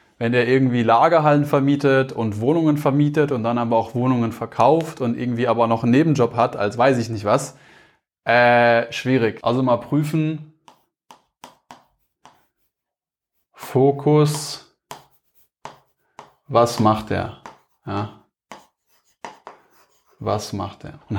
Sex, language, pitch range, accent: male, German, 110-140 Hz, German